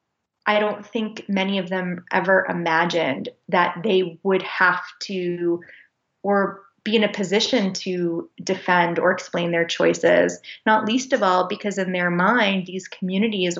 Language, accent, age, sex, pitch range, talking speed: English, American, 20-39, female, 175-200 Hz, 150 wpm